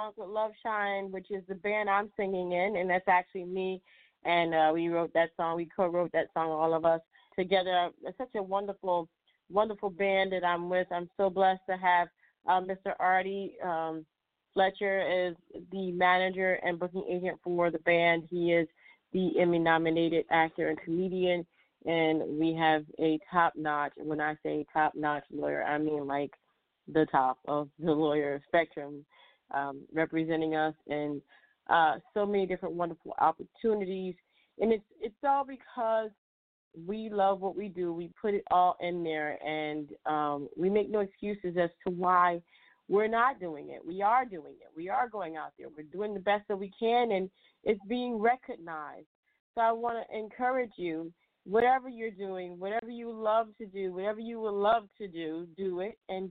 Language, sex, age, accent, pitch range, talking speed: English, female, 30-49, American, 165-200 Hz, 175 wpm